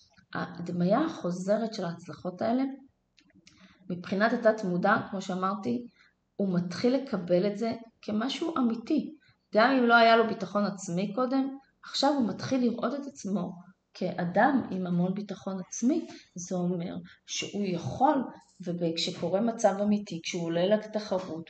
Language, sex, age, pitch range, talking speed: Hebrew, female, 20-39, 175-220 Hz, 130 wpm